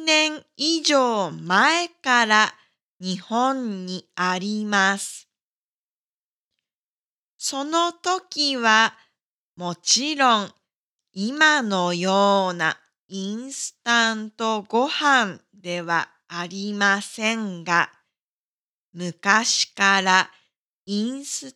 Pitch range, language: 185-250 Hz, Japanese